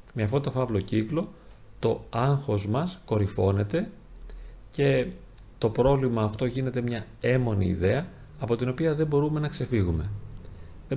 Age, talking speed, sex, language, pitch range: 40-59, 135 wpm, male, Greek, 105-135 Hz